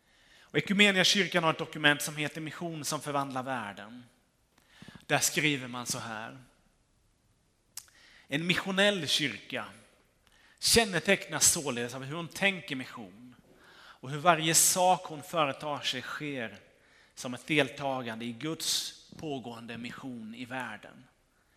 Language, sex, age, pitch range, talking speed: Swedish, male, 30-49, 125-165 Hz, 115 wpm